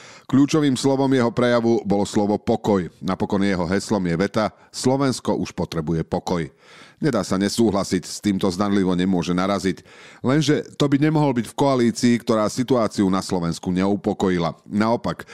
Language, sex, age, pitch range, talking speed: Slovak, male, 40-59, 90-120 Hz, 145 wpm